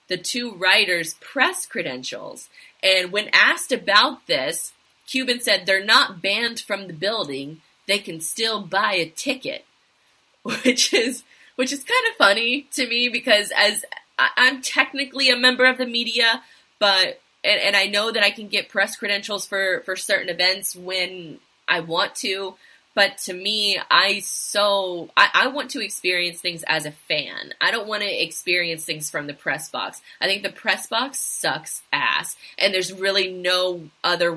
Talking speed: 170 wpm